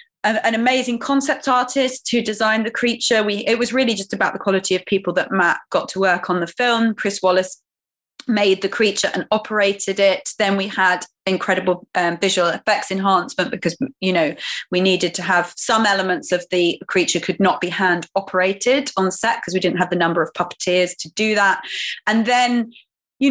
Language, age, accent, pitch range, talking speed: English, 30-49, British, 180-230 Hz, 190 wpm